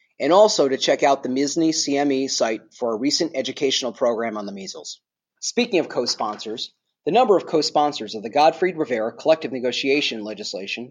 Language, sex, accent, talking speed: English, male, American, 170 wpm